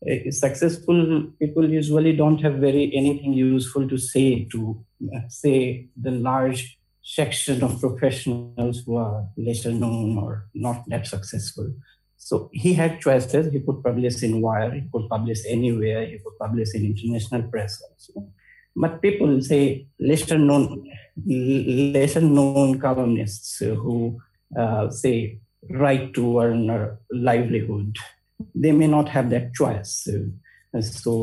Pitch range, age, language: 115-145 Hz, 50-69, English